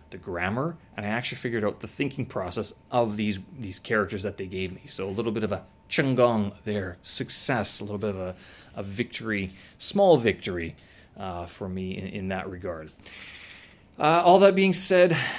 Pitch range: 95-125 Hz